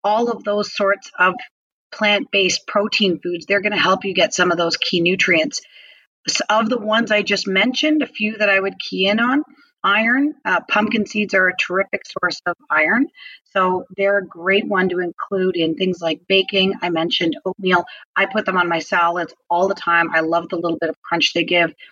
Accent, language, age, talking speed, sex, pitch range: American, English, 30-49, 205 wpm, female, 175-200 Hz